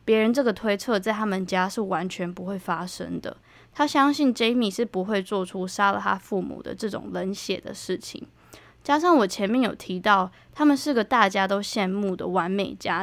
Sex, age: female, 20-39